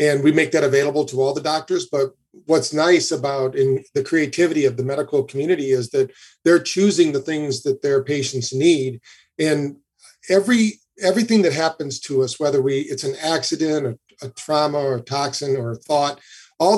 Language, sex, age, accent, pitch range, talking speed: English, male, 50-69, American, 135-165 Hz, 185 wpm